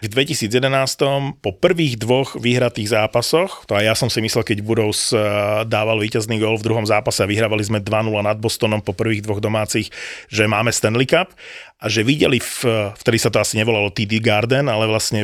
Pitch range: 105-125 Hz